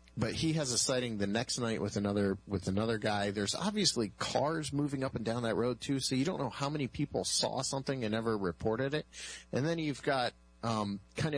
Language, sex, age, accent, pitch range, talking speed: English, male, 40-59, American, 95-120 Hz, 220 wpm